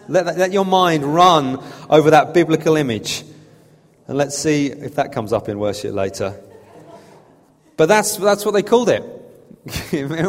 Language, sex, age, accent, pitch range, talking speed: English, male, 30-49, British, 140-185 Hz, 165 wpm